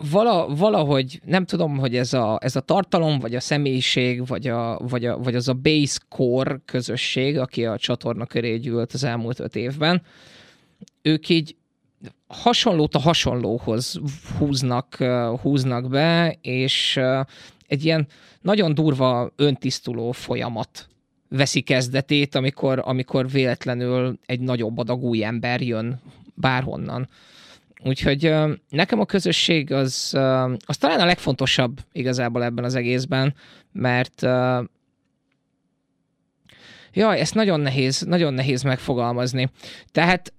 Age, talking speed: 20-39, 120 wpm